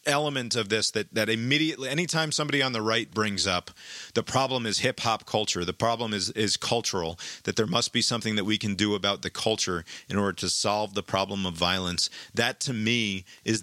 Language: English